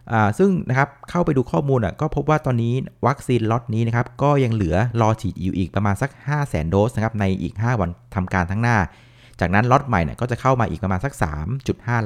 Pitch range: 100-125 Hz